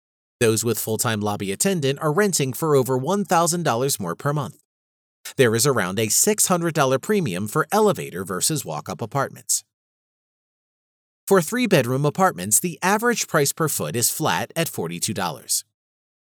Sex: male